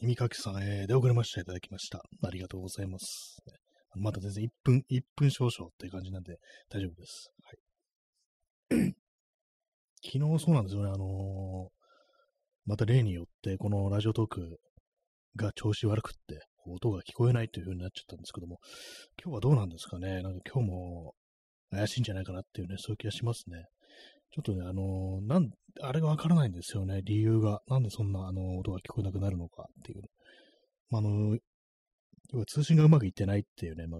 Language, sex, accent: Japanese, male, native